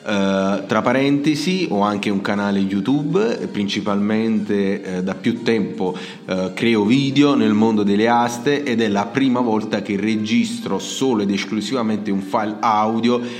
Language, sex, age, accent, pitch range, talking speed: Italian, male, 30-49, native, 100-115 Hz, 135 wpm